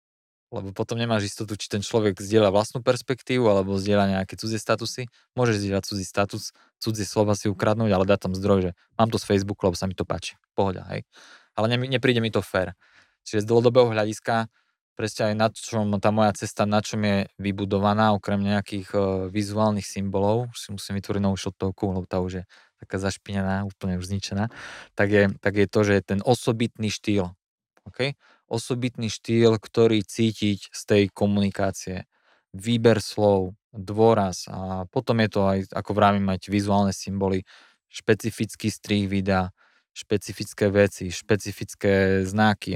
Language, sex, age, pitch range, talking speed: Slovak, male, 20-39, 95-110 Hz, 165 wpm